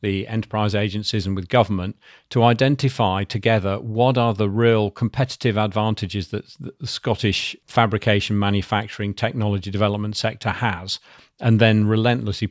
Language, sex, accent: English, male, British